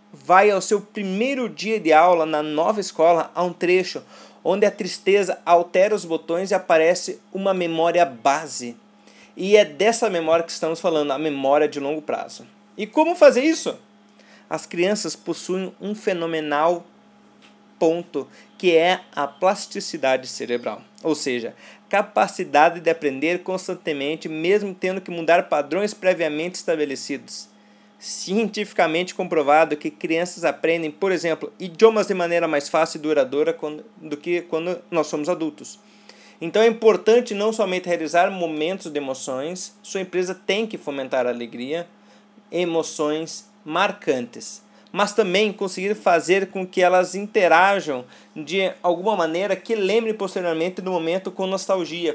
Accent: Brazilian